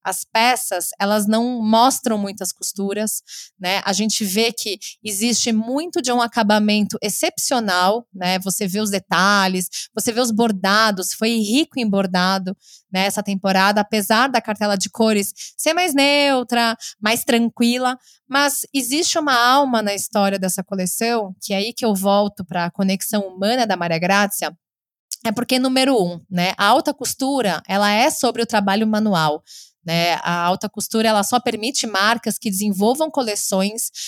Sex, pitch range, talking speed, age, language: female, 190-235 Hz, 160 wpm, 20-39, Portuguese